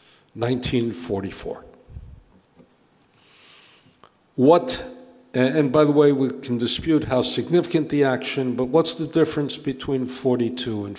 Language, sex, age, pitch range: English, male, 60-79, 120-140 Hz